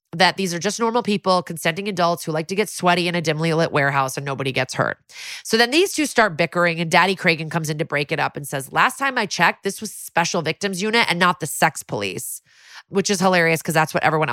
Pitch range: 155-195 Hz